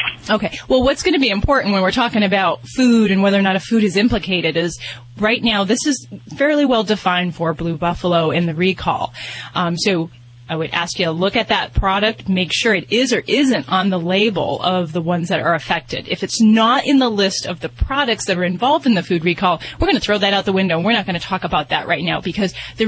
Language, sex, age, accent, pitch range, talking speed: English, female, 30-49, American, 175-225 Hz, 250 wpm